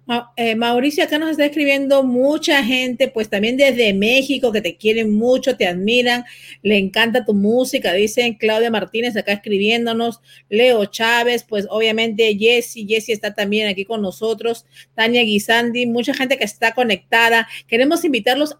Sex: female